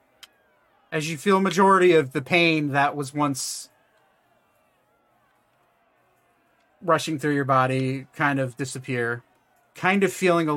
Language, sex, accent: English, male, American